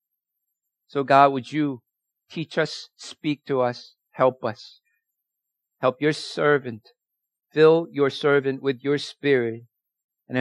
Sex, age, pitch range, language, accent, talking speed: male, 50-69, 130-160 Hz, English, American, 120 wpm